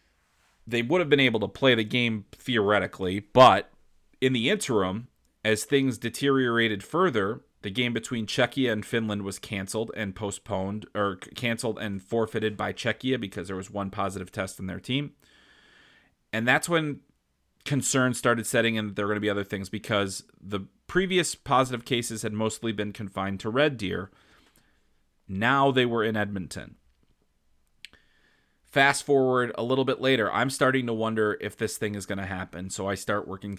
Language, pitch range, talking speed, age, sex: English, 95-125 Hz, 170 wpm, 30-49, male